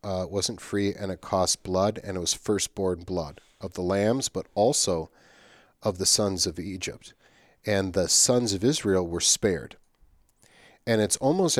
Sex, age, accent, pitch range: male, 40-59, American, 90-110 Hz